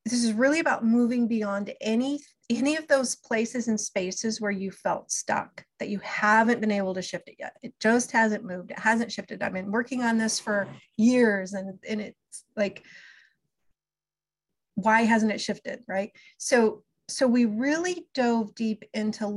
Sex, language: female, English